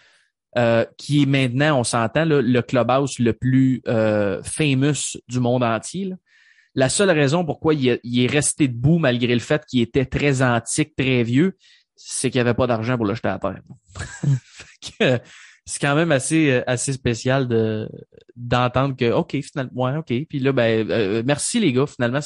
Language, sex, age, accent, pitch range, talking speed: French, male, 20-39, Canadian, 120-160 Hz, 185 wpm